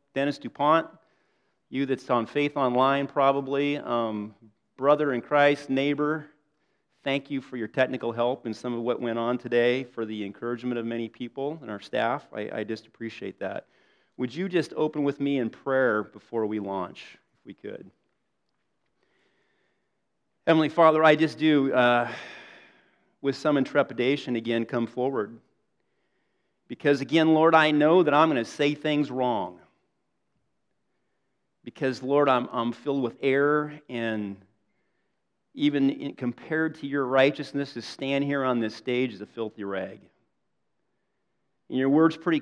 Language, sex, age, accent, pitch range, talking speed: English, male, 40-59, American, 120-145 Hz, 150 wpm